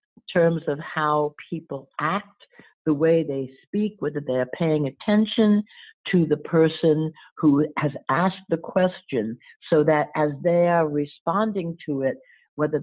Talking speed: 140 wpm